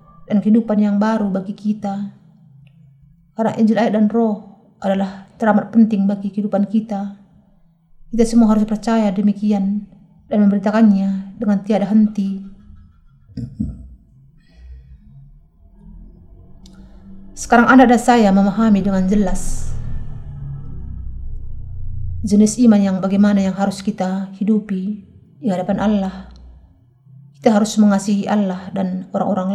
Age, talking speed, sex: 30-49, 100 wpm, female